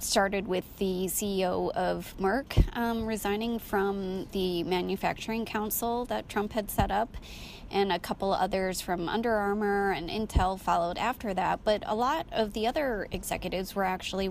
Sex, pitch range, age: female, 175-210 Hz, 20-39